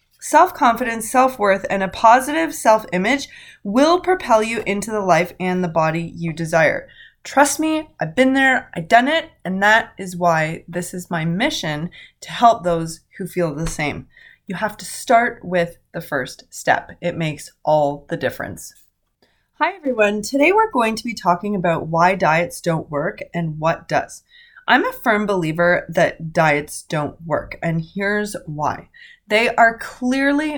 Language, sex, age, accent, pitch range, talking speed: English, female, 20-39, American, 175-255 Hz, 165 wpm